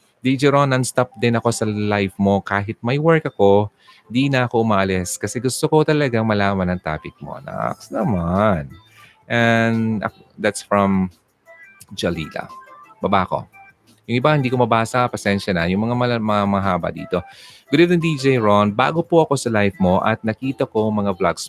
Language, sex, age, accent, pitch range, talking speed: Filipino, male, 30-49, native, 100-130 Hz, 165 wpm